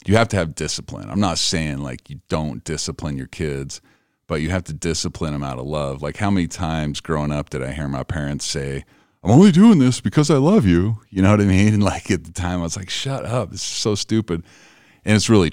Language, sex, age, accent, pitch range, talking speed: English, male, 40-59, American, 70-90 Hz, 250 wpm